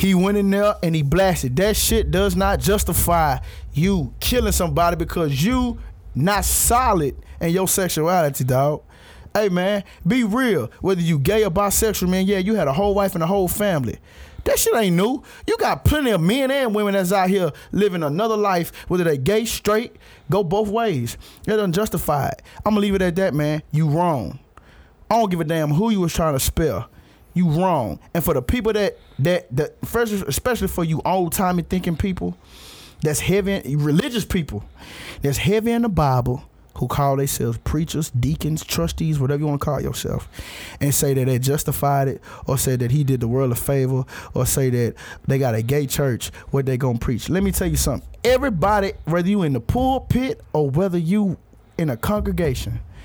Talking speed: 195 wpm